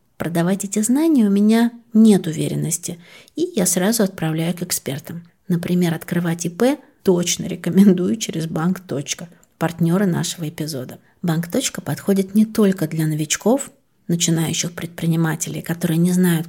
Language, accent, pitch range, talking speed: Russian, native, 165-200 Hz, 125 wpm